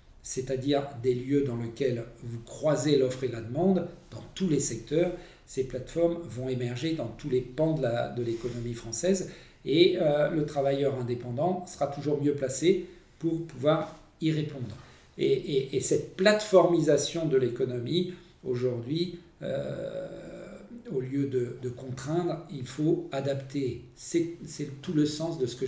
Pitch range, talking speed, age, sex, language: 125-155 Hz, 155 wpm, 50-69, male, French